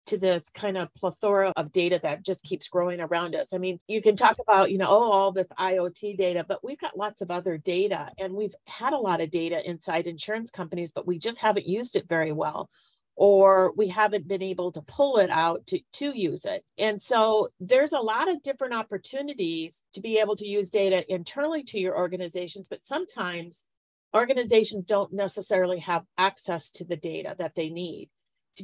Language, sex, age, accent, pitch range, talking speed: English, female, 40-59, American, 180-210 Hz, 200 wpm